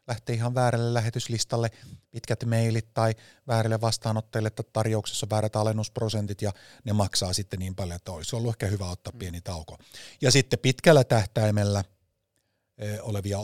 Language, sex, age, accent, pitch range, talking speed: Finnish, male, 50-69, native, 100-130 Hz, 145 wpm